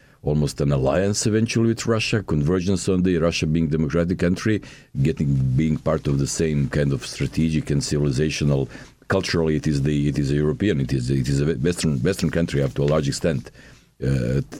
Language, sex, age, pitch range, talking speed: English, male, 50-69, 75-90 Hz, 190 wpm